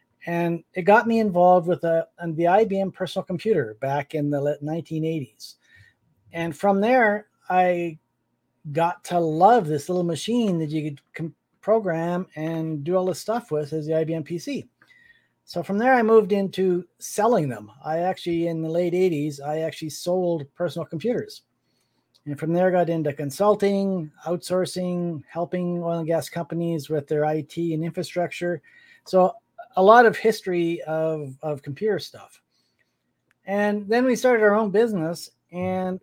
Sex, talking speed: male, 160 wpm